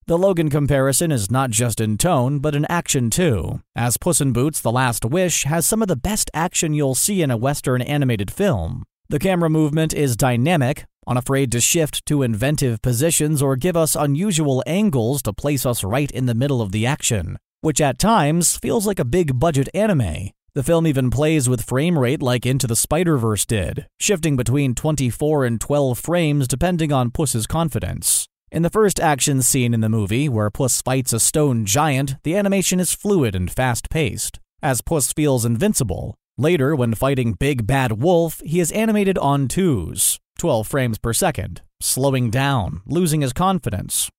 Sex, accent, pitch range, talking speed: male, American, 120-160 Hz, 180 wpm